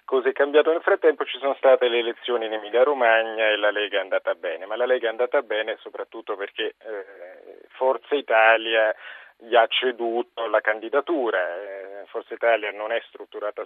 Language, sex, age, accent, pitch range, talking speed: Italian, male, 30-49, native, 110-155 Hz, 170 wpm